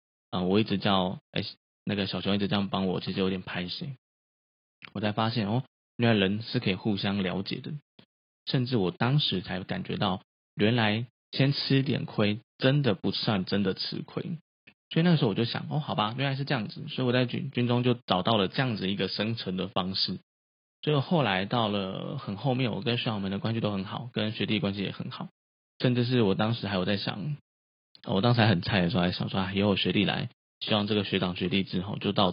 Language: Chinese